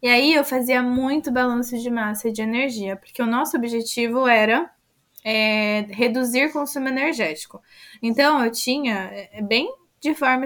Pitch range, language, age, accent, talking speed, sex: 225-270 Hz, Portuguese, 20-39, Brazilian, 150 wpm, female